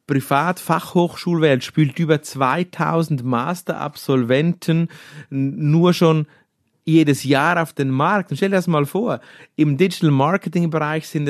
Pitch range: 130-185 Hz